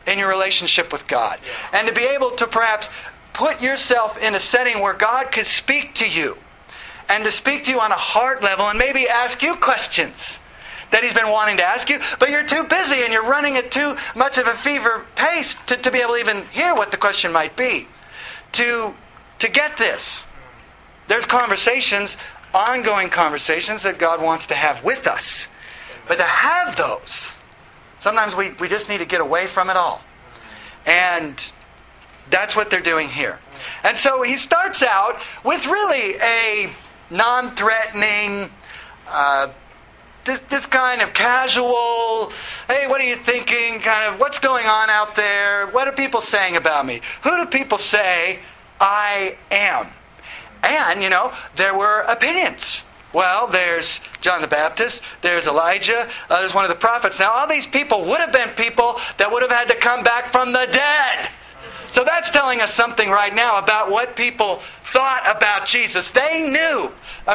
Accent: American